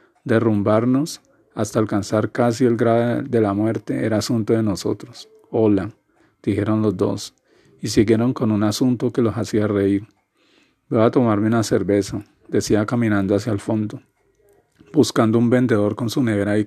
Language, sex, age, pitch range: Spanish, male, 40-59, 105-115 Hz